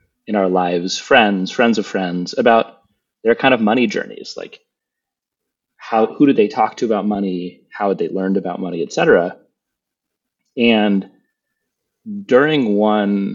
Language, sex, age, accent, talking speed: English, male, 30-49, American, 145 wpm